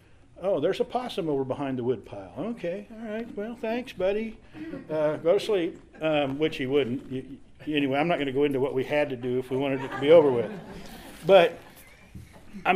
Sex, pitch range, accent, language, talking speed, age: male, 110-185 Hz, American, English, 215 wpm, 50-69